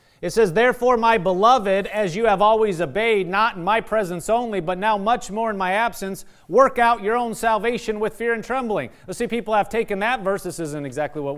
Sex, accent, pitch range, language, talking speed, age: male, American, 180-235 Hz, English, 225 wpm, 30-49